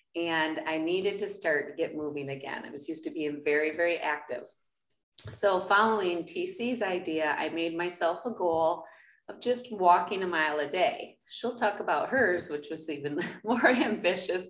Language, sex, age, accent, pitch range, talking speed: English, female, 30-49, American, 155-220 Hz, 175 wpm